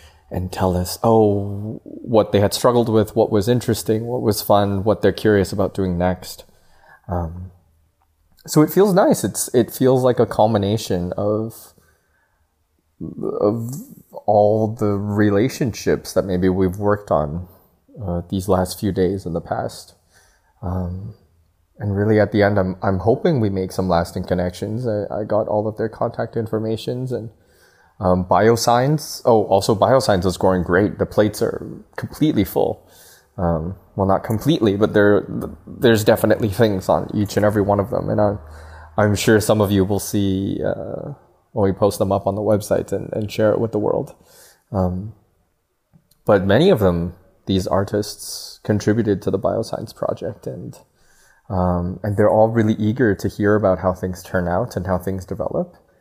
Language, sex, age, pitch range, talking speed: German, male, 20-39, 90-110 Hz, 170 wpm